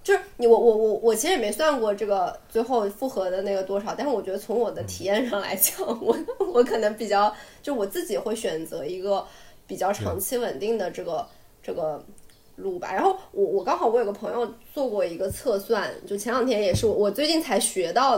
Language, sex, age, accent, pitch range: Chinese, female, 20-39, native, 195-275 Hz